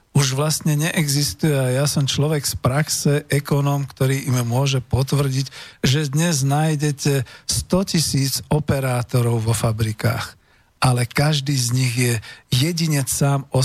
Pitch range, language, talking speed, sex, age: 120-140 Hz, Slovak, 130 wpm, male, 50-69